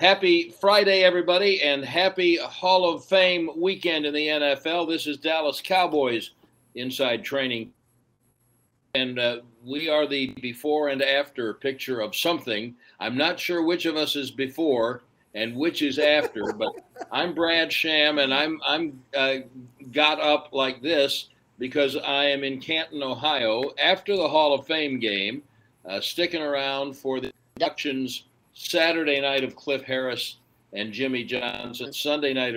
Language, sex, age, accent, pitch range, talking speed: English, male, 60-79, American, 120-155 Hz, 150 wpm